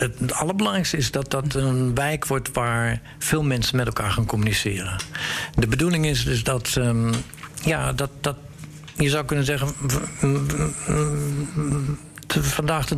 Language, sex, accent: Dutch, male, Dutch